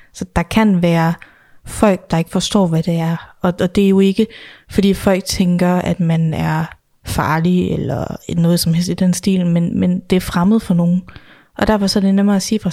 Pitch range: 175-205 Hz